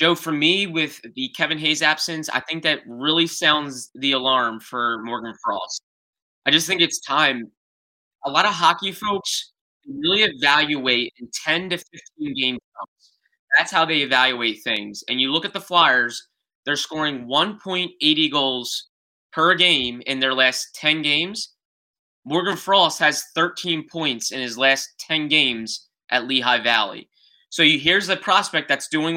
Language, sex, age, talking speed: English, male, 20-39, 160 wpm